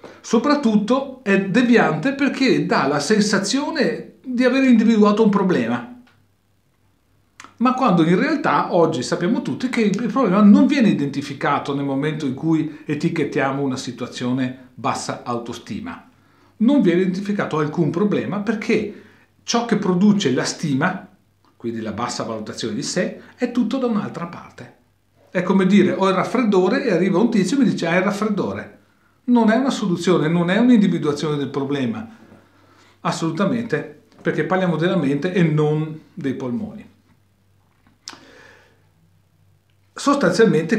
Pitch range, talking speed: 140-220 Hz, 135 wpm